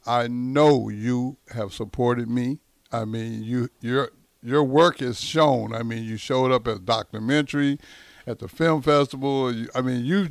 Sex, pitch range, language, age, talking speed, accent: male, 125-155 Hz, English, 60-79, 165 wpm, American